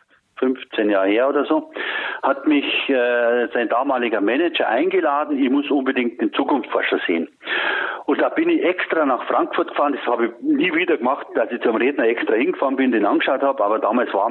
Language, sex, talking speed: German, male, 190 wpm